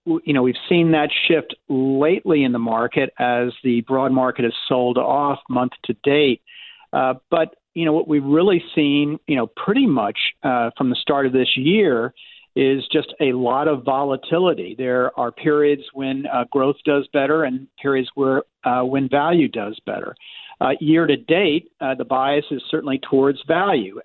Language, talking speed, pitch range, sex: English, 180 wpm, 130-160 Hz, male